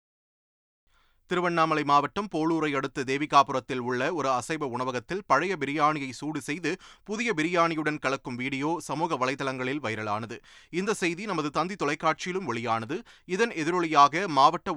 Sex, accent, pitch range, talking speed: male, native, 130-170 Hz, 120 wpm